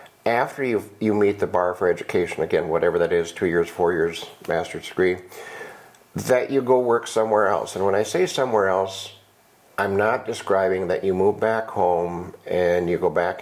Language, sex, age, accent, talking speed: English, male, 50-69, American, 190 wpm